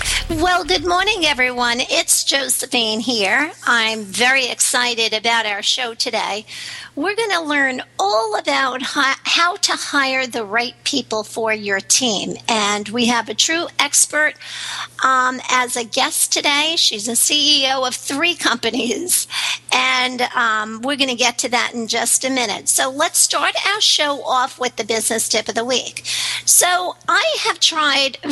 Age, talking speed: 50-69, 160 wpm